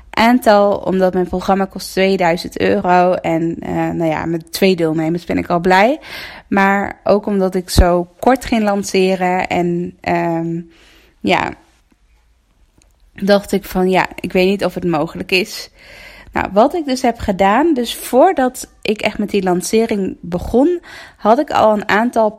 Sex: female